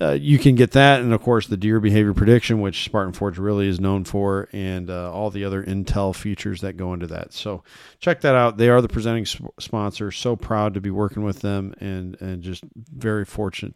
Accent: American